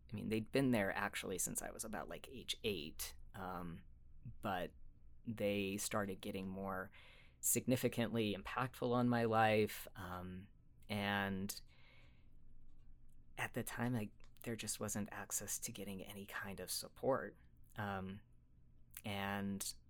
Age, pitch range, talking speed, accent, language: 30-49, 95-115 Hz, 125 wpm, American, English